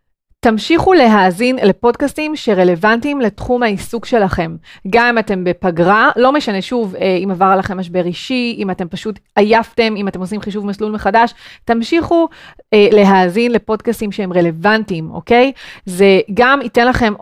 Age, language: 30-49, Hebrew